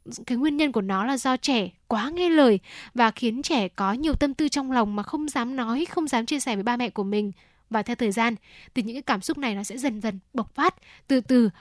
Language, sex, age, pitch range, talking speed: Vietnamese, female, 10-29, 210-270 Hz, 265 wpm